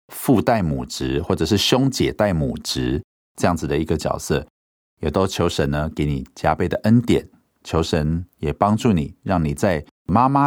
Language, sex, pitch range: Chinese, male, 70-95 Hz